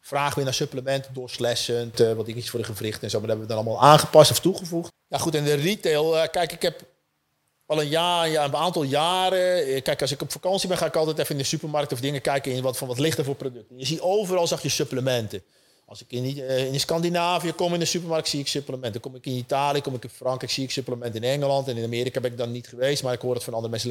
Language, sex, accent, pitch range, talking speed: Dutch, male, Dutch, 125-165 Hz, 285 wpm